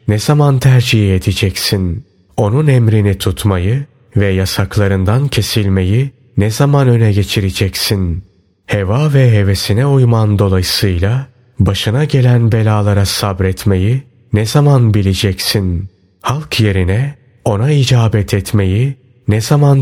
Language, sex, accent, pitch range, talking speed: Turkish, male, native, 95-125 Hz, 100 wpm